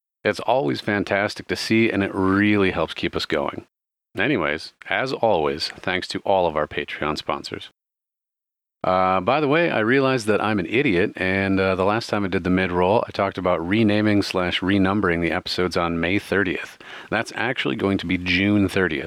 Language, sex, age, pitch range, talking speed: English, male, 40-59, 90-110 Hz, 185 wpm